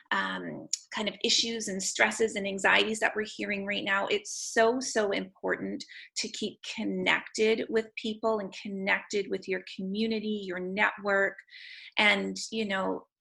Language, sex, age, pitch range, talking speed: English, female, 30-49, 195-225 Hz, 145 wpm